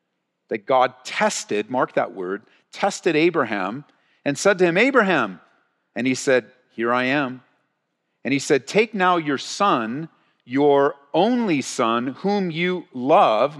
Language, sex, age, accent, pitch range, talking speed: English, male, 50-69, American, 125-160 Hz, 140 wpm